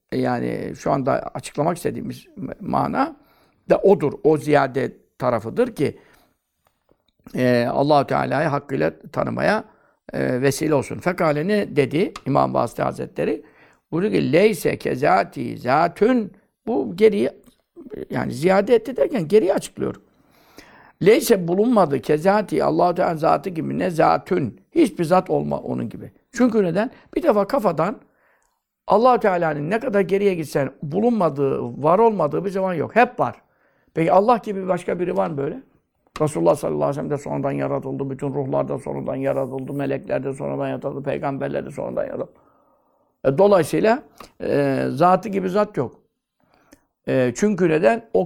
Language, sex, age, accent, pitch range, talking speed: Turkish, male, 60-79, native, 150-220 Hz, 135 wpm